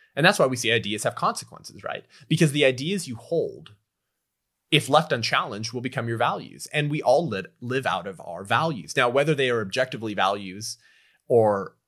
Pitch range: 105-130 Hz